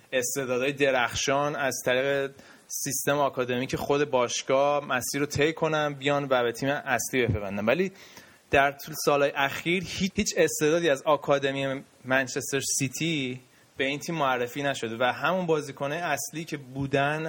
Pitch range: 125-150 Hz